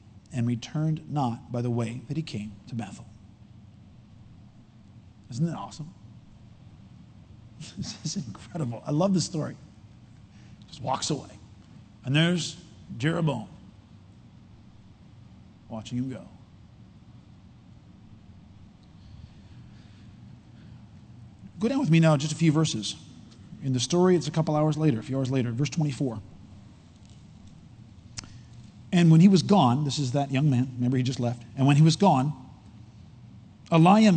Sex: male